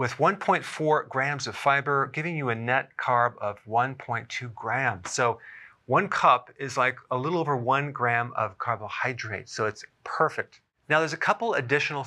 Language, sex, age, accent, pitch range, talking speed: English, male, 40-59, American, 115-140 Hz, 165 wpm